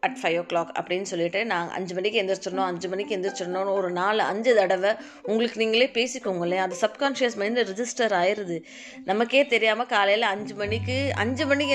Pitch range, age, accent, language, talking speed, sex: 185-230 Hz, 20-39, native, Tamil, 170 wpm, female